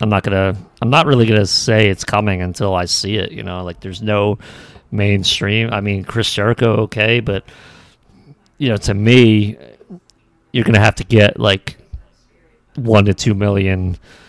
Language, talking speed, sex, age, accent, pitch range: English, 170 wpm, male, 30-49, American, 95-115 Hz